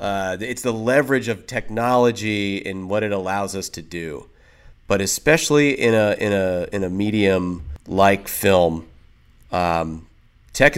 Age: 30-49